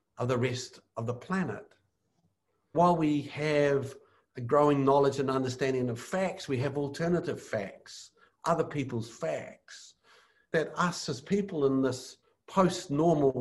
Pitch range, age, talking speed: 125-160 Hz, 60-79, 135 wpm